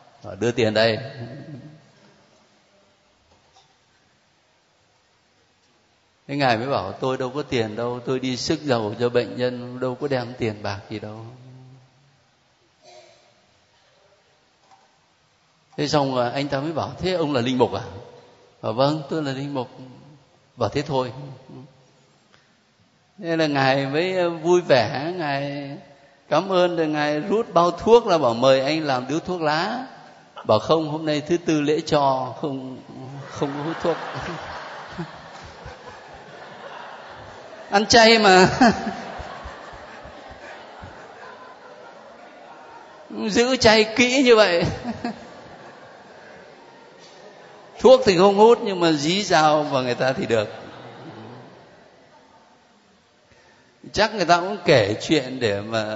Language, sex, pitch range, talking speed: Vietnamese, male, 125-170 Hz, 120 wpm